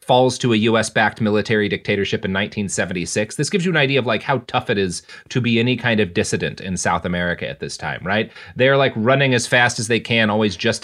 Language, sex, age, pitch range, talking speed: English, male, 30-49, 105-130 Hz, 235 wpm